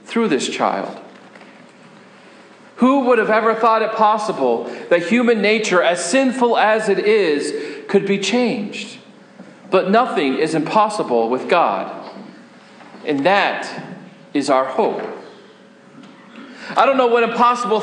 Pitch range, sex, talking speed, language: 205-245 Hz, male, 120 wpm, English